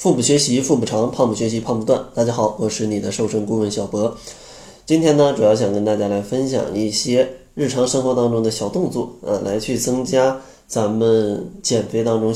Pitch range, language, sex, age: 110-130 Hz, Chinese, male, 20-39